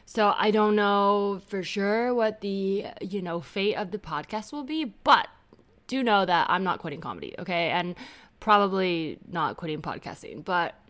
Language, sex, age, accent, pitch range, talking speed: English, female, 20-39, American, 175-215 Hz, 170 wpm